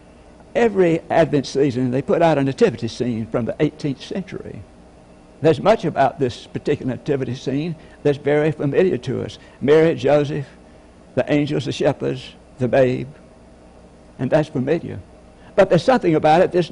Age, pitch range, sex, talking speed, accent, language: 60-79, 125-180 Hz, male, 150 wpm, American, English